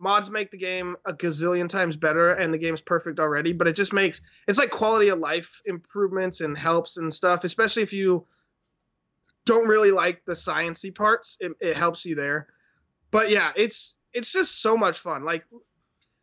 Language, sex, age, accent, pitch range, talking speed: English, male, 20-39, American, 175-215 Hz, 190 wpm